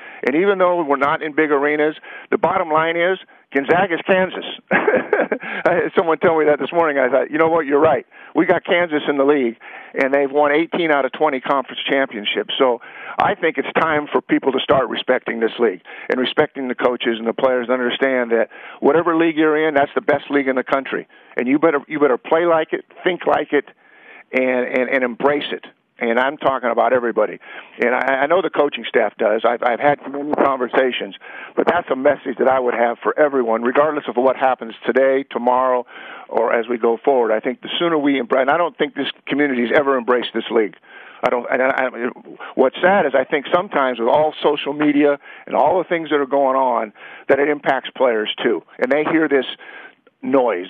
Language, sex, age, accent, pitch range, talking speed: English, male, 50-69, American, 125-150 Hz, 215 wpm